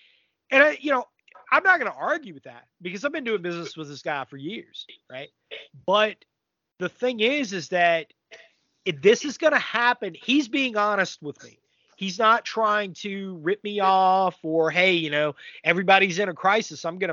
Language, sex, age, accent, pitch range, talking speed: English, male, 30-49, American, 165-240 Hz, 195 wpm